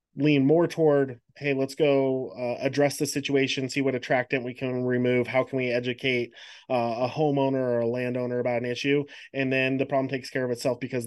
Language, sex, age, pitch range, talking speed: English, male, 20-39, 120-145 Hz, 205 wpm